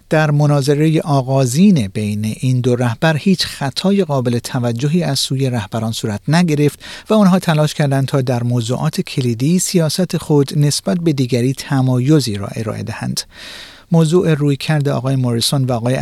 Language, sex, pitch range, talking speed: Persian, male, 120-160 Hz, 150 wpm